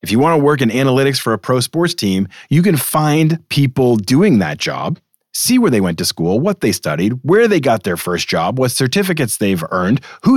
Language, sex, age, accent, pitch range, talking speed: English, male, 40-59, American, 110-150 Hz, 225 wpm